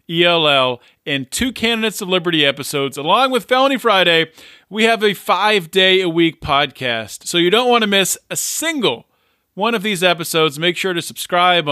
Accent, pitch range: American, 150-205 Hz